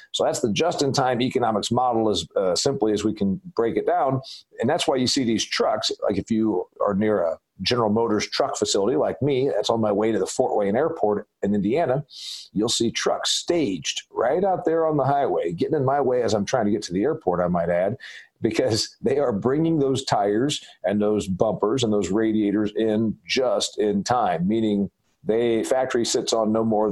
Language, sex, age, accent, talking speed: English, male, 50-69, American, 205 wpm